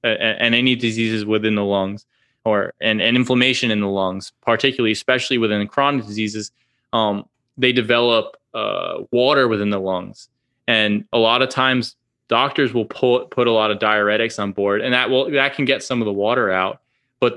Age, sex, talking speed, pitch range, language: 20-39, male, 190 wpm, 105-125 Hz, English